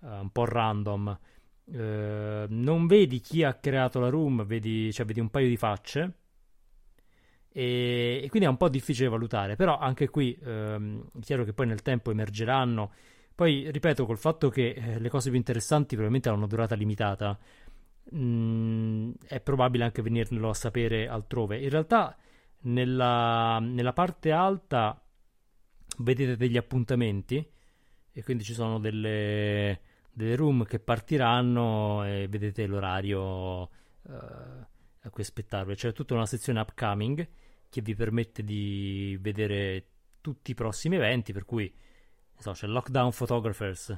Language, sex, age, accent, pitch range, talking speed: Italian, male, 30-49, native, 105-130 Hz, 140 wpm